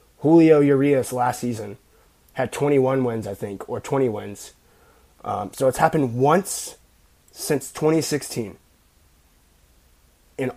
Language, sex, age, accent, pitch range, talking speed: English, male, 20-39, American, 130-165 Hz, 115 wpm